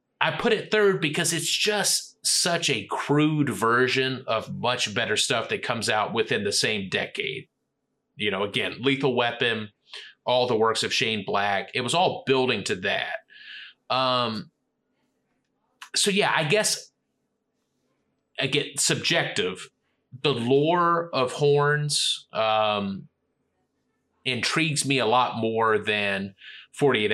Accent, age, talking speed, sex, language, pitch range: American, 30-49, 130 wpm, male, English, 125-160 Hz